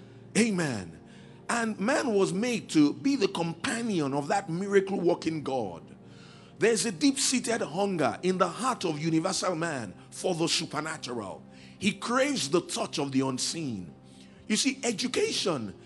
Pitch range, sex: 145-210 Hz, male